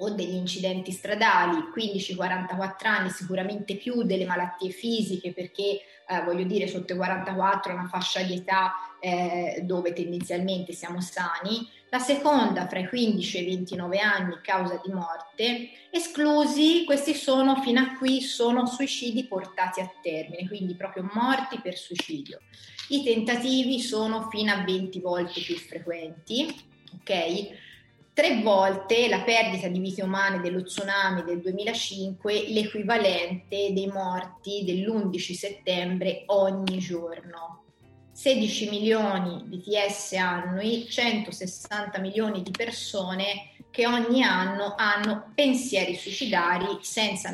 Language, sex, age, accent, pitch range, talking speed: Italian, female, 20-39, native, 180-225 Hz, 125 wpm